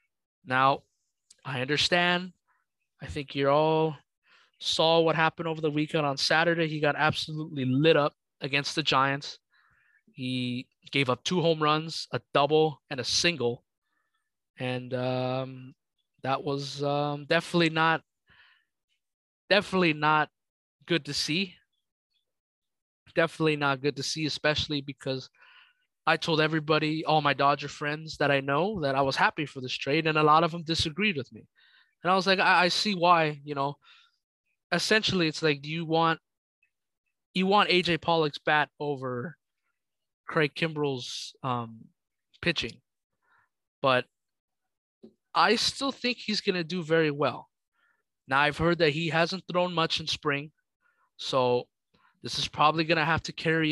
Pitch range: 140-165 Hz